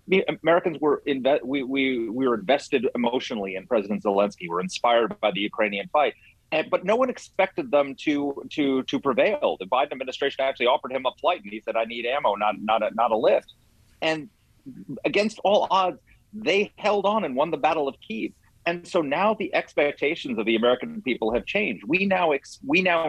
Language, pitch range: English, 120-190 Hz